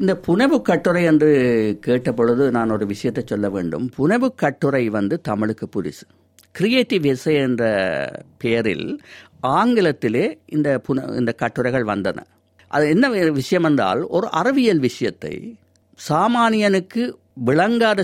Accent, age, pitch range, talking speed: native, 60-79, 125-195 Hz, 110 wpm